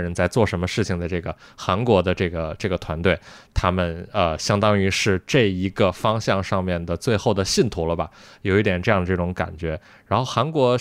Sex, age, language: male, 20-39, Chinese